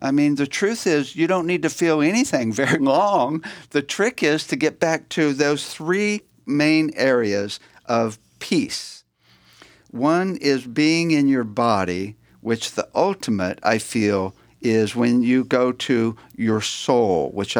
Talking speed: 155 wpm